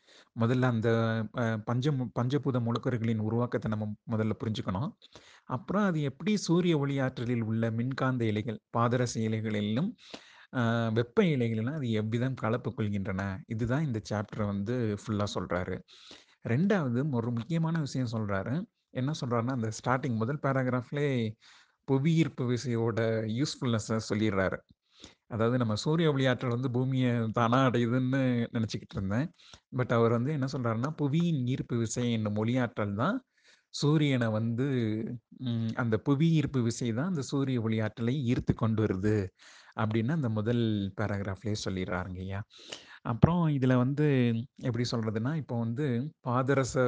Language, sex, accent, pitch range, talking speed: Tamil, male, native, 110-130 Hz, 120 wpm